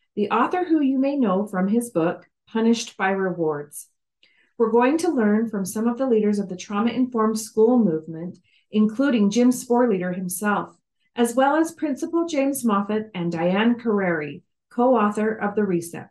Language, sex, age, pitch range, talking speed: English, female, 40-59, 190-240 Hz, 160 wpm